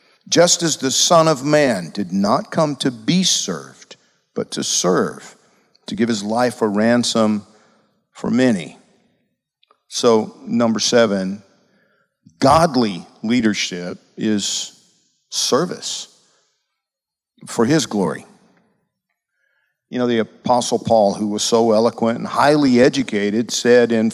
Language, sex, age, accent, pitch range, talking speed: English, male, 50-69, American, 105-140 Hz, 115 wpm